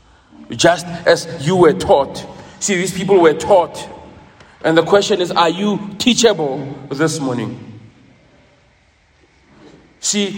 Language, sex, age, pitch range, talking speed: English, male, 40-59, 170-225 Hz, 115 wpm